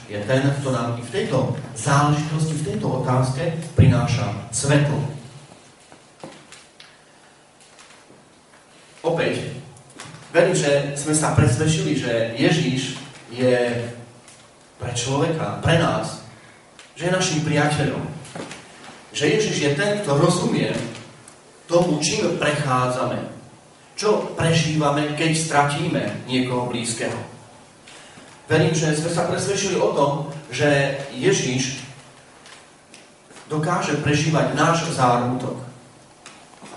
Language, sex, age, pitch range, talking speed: Slovak, male, 40-59, 120-150 Hz, 95 wpm